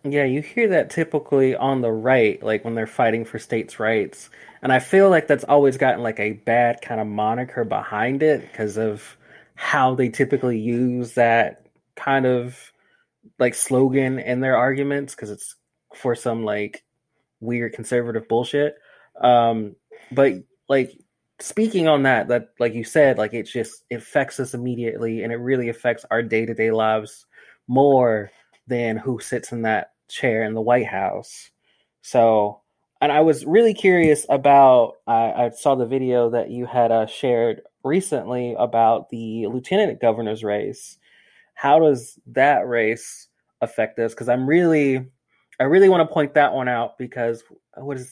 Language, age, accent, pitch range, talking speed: English, 20-39, American, 115-145 Hz, 160 wpm